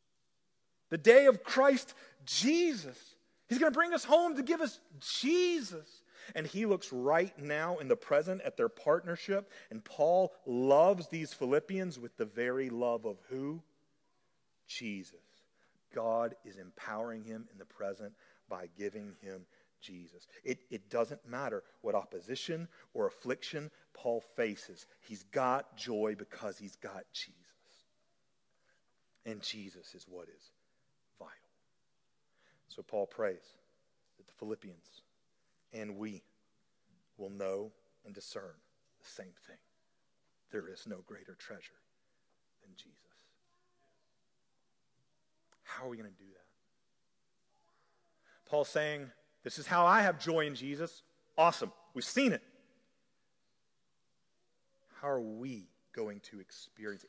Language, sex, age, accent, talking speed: English, male, 40-59, American, 125 wpm